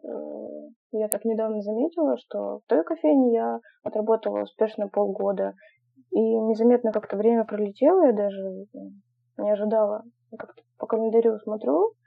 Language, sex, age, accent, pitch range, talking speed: Russian, female, 20-39, native, 205-245 Hz, 125 wpm